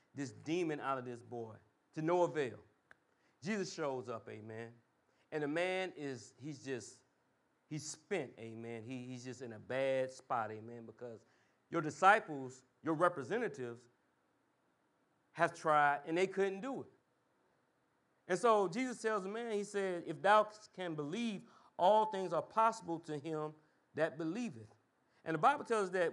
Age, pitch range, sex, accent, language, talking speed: 40-59, 145-200 Hz, male, American, English, 155 wpm